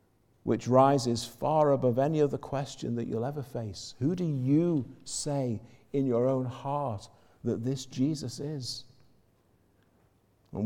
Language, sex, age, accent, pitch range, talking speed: English, male, 50-69, British, 110-155 Hz, 135 wpm